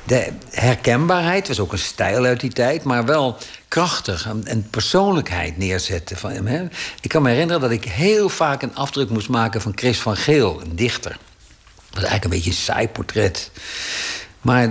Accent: Dutch